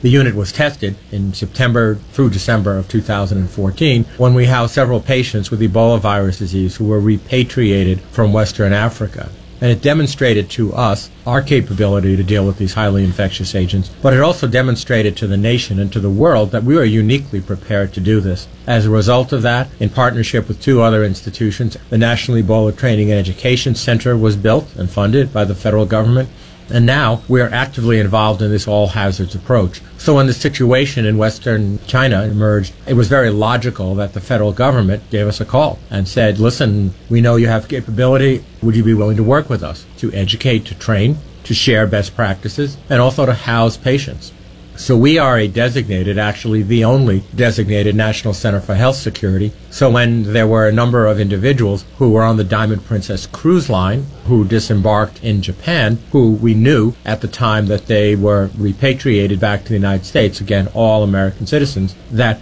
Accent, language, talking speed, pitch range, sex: American, English, 190 wpm, 100-120 Hz, male